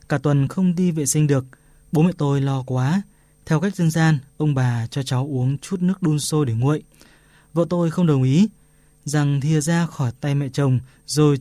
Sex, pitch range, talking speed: male, 135-160 Hz, 210 wpm